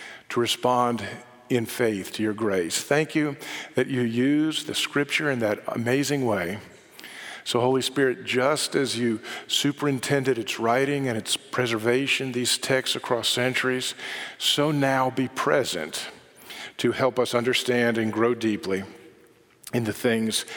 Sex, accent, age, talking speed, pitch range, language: male, American, 50-69, 140 wpm, 115-145 Hz, English